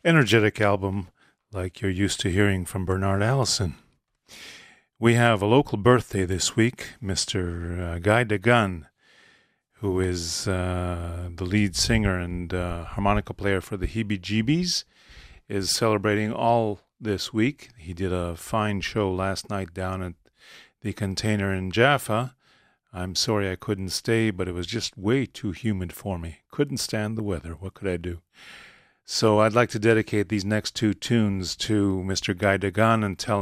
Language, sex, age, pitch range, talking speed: English, male, 40-59, 90-110 Hz, 160 wpm